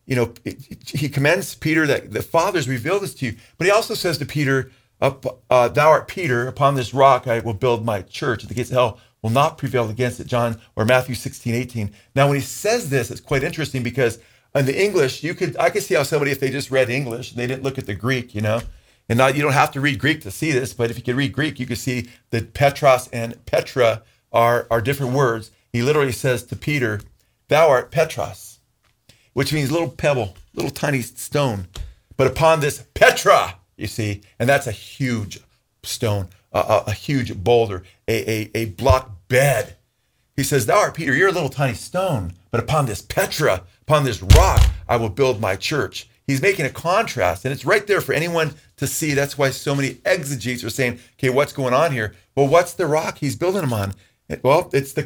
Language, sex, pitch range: English, male, 115-140 Hz